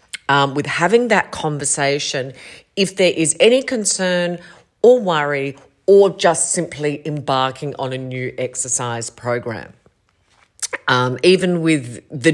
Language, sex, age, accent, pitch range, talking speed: English, female, 40-59, Australian, 140-185 Hz, 120 wpm